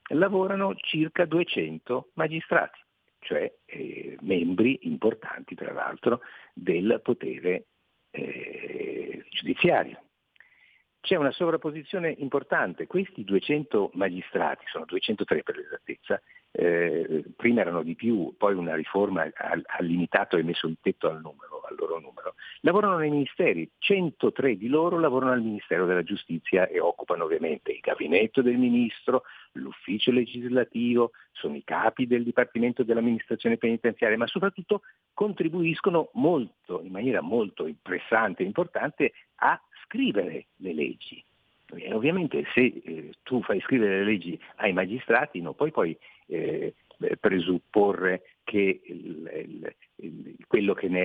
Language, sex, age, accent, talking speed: Italian, male, 50-69, native, 125 wpm